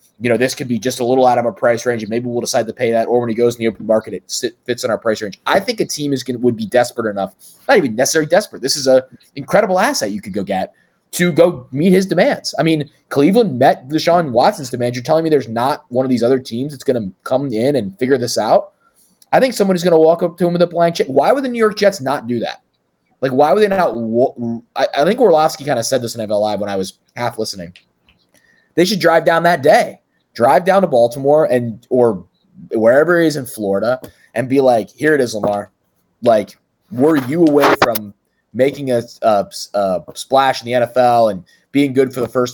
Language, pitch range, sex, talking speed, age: English, 120-170 Hz, male, 245 wpm, 20-39